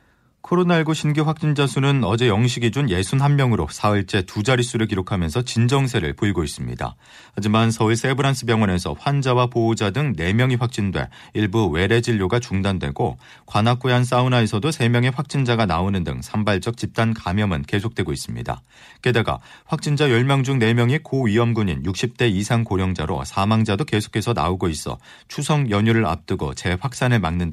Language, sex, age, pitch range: Korean, male, 40-59, 100-130 Hz